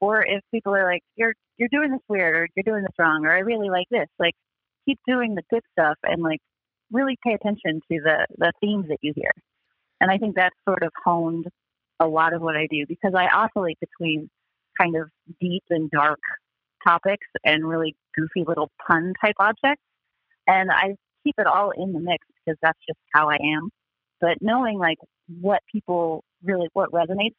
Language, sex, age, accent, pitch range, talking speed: English, female, 30-49, American, 160-200 Hz, 195 wpm